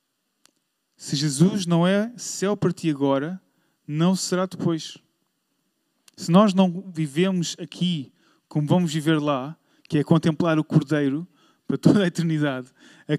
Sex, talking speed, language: male, 135 wpm, Portuguese